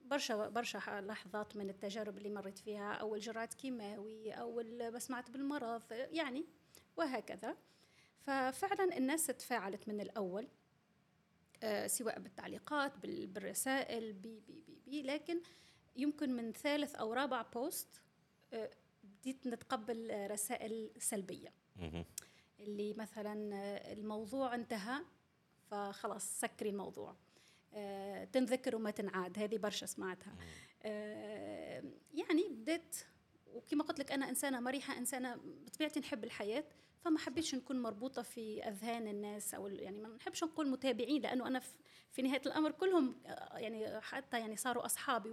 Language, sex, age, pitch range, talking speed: Arabic, female, 20-39, 215-275 Hz, 115 wpm